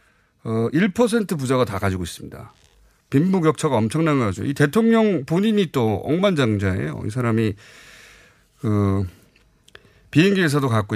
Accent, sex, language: native, male, Korean